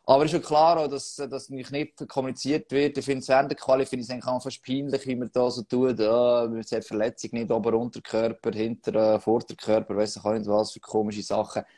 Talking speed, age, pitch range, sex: 215 wpm, 20-39, 115-145 Hz, male